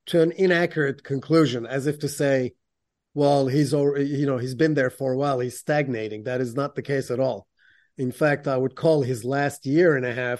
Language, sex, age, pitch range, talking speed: English, male, 30-49, 135-155 Hz, 225 wpm